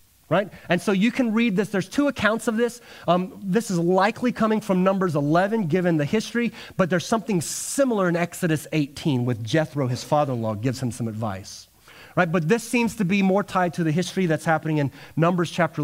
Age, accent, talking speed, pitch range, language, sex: 30-49, American, 205 wpm, 120-175 Hz, English, male